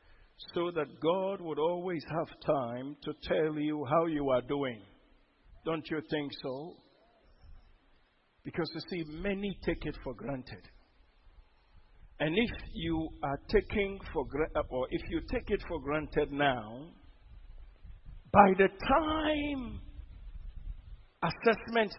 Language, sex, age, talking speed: English, male, 50-69, 120 wpm